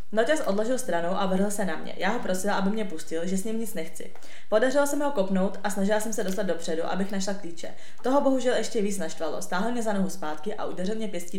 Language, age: Czech, 20-39